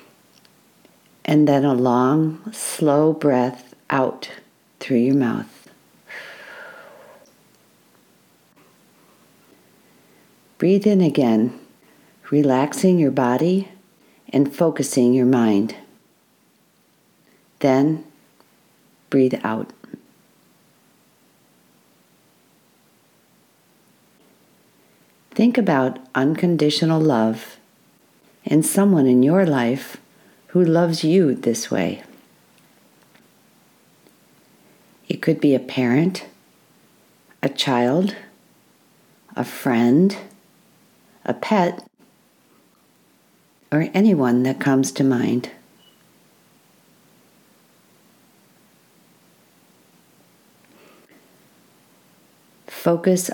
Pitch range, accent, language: 125-165 Hz, American, English